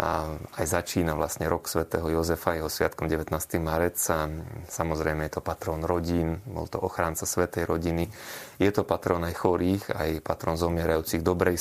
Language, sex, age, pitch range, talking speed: Slovak, male, 30-49, 80-95 Hz, 155 wpm